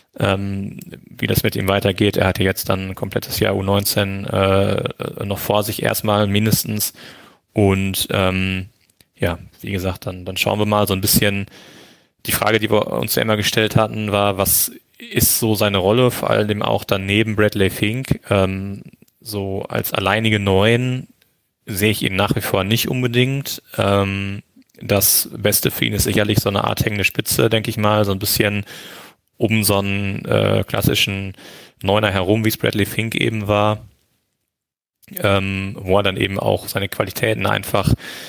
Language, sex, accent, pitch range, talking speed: German, male, German, 95-110 Hz, 170 wpm